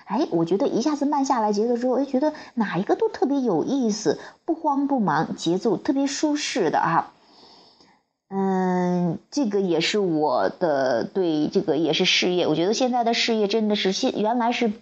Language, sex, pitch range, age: Chinese, female, 185-265 Hz, 30-49